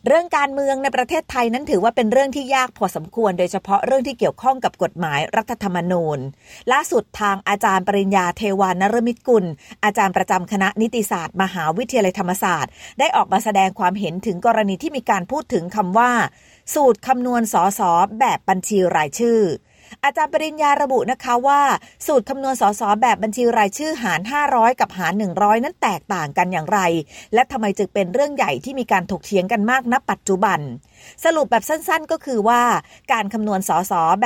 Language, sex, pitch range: Thai, female, 195-265 Hz